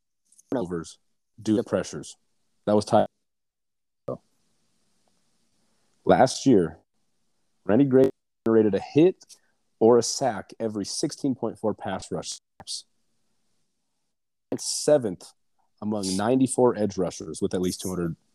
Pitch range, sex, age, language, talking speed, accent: 95-130 Hz, male, 40-59, English, 100 wpm, American